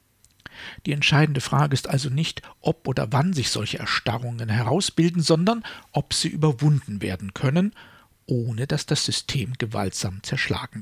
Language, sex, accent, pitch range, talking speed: German, male, German, 115-160 Hz, 140 wpm